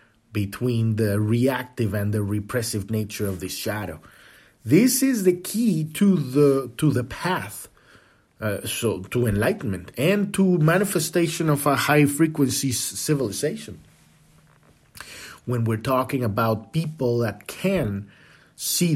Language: English